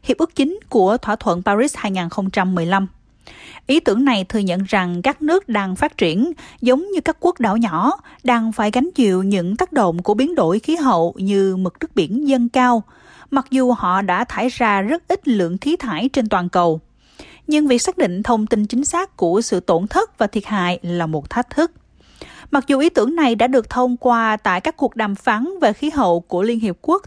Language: Vietnamese